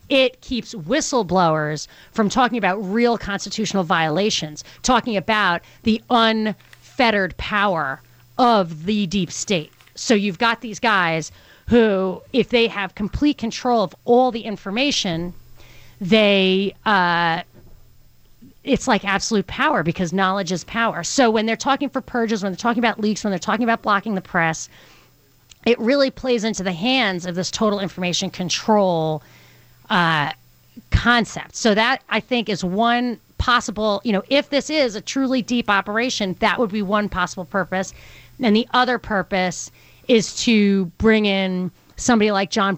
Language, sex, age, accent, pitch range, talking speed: English, female, 30-49, American, 185-230 Hz, 150 wpm